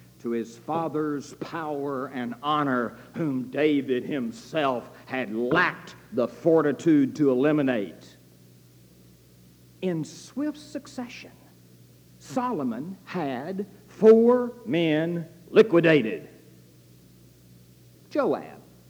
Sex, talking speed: male, 75 wpm